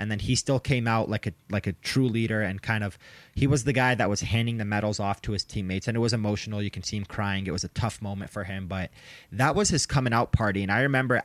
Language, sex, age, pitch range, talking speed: English, male, 20-39, 100-130 Hz, 290 wpm